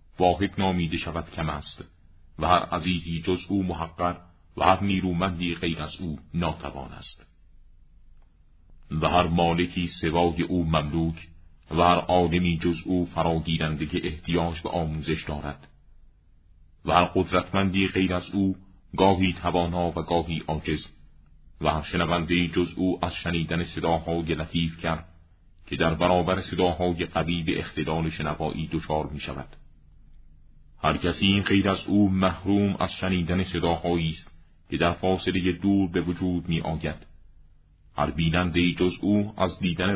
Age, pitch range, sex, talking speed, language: 40-59, 80-90 Hz, male, 140 wpm, Persian